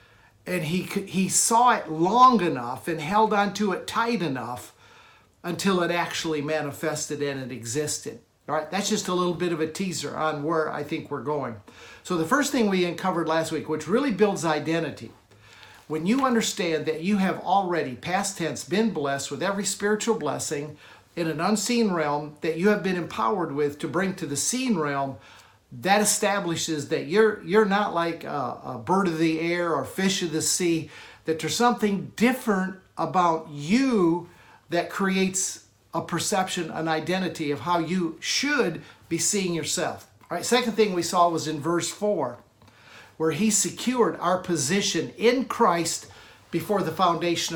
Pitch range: 155-205 Hz